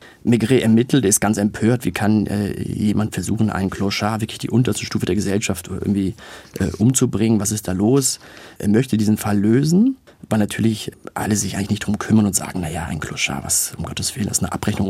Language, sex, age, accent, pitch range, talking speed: German, male, 40-59, German, 100-115 Hz, 205 wpm